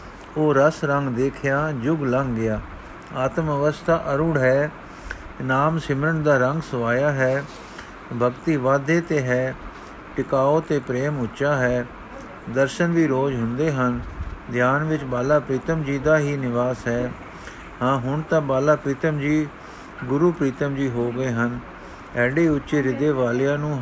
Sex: male